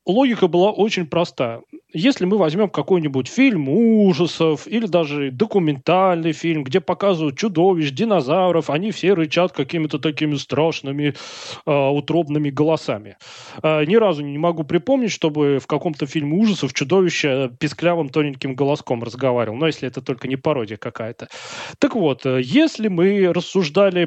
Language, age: Russian, 20-39